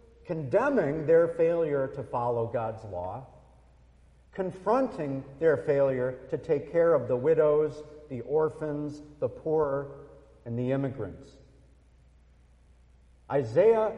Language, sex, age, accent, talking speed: English, male, 50-69, American, 105 wpm